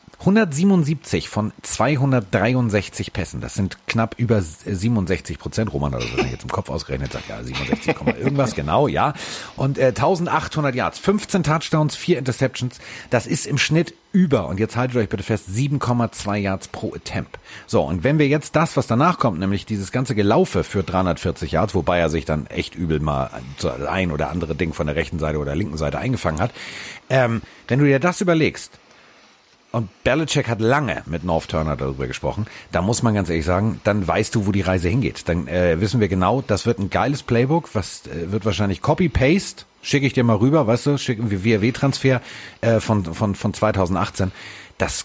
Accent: German